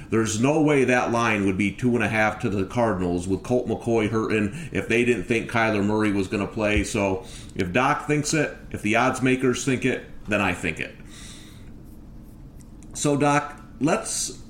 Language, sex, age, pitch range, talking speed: English, male, 40-59, 110-140 Hz, 180 wpm